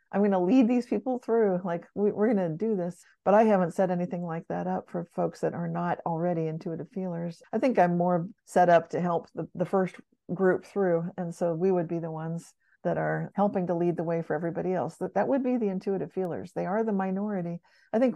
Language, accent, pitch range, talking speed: English, American, 175-220 Hz, 240 wpm